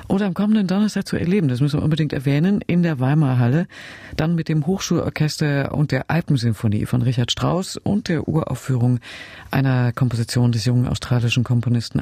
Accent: German